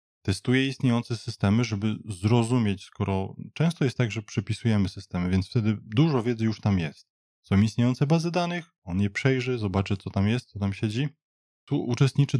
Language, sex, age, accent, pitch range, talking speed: Polish, male, 20-39, native, 100-135 Hz, 170 wpm